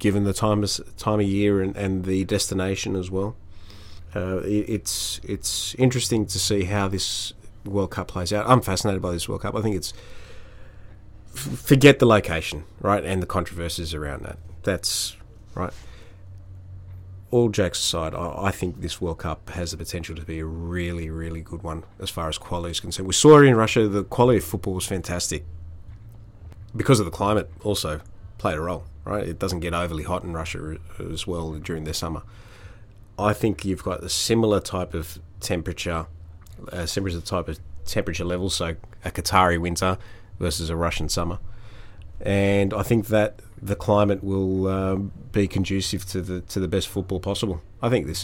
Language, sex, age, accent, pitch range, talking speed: English, male, 30-49, Australian, 85-105 Hz, 180 wpm